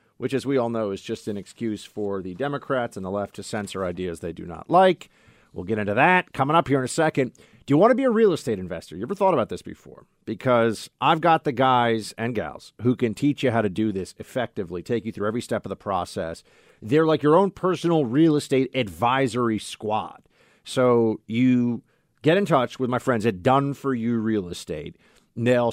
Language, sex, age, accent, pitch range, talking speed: English, male, 40-59, American, 115-150 Hz, 220 wpm